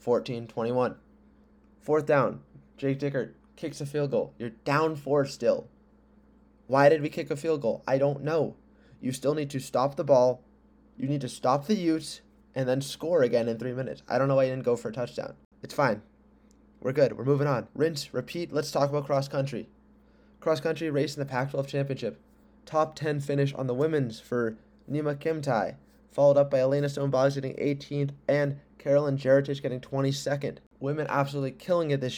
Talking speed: 185 wpm